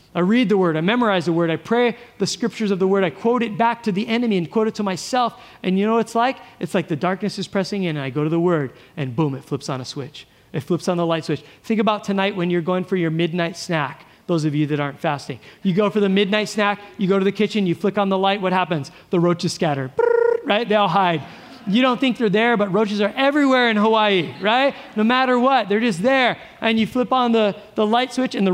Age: 30-49